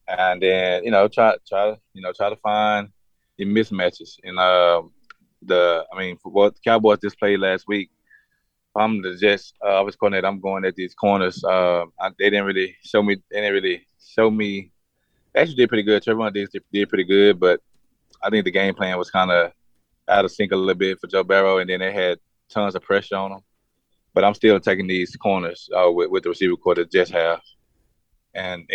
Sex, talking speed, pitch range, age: male, 215 wpm, 90-105 Hz, 20-39